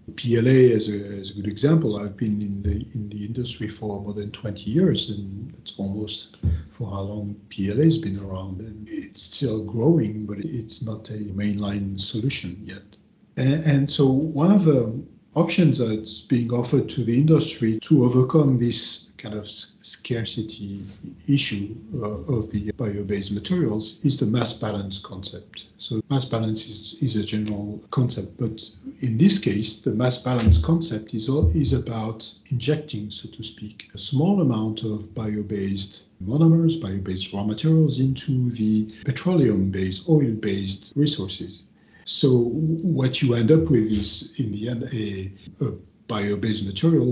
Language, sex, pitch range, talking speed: English, male, 105-140 Hz, 155 wpm